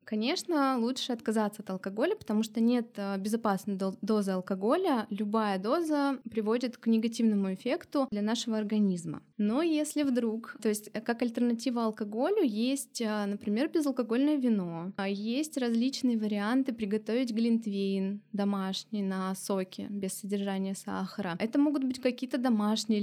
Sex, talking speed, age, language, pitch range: female, 125 wpm, 20-39, Russian, 205-250 Hz